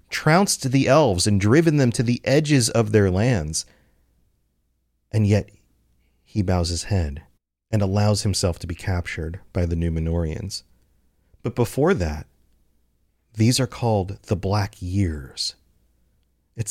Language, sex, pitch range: English, male, 90-115 Hz